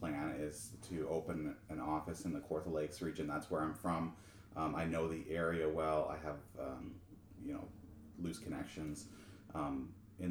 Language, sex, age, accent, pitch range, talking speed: English, male, 30-49, American, 80-105 Hz, 175 wpm